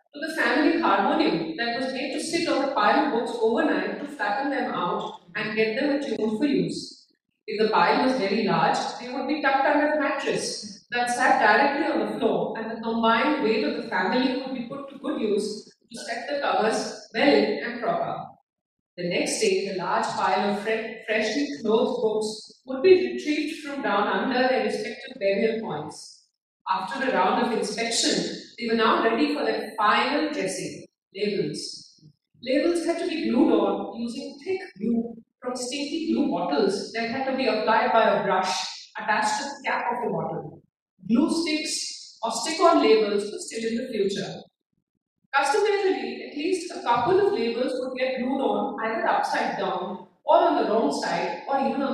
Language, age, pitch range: English, 40-59, 220-285 Hz